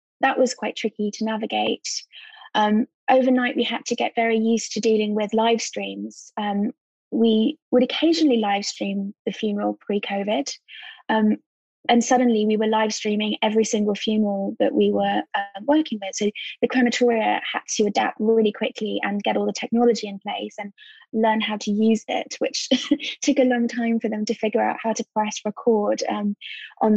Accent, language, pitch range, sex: British, English, 215-255 Hz, female